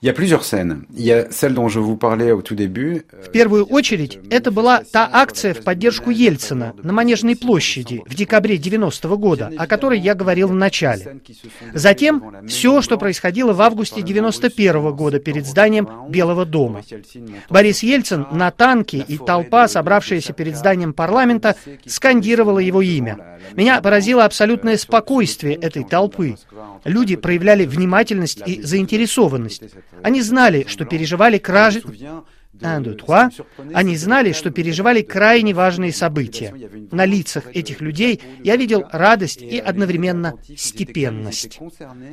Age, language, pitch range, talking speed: 40-59, Russian, 150-215 Hz, 110 wpm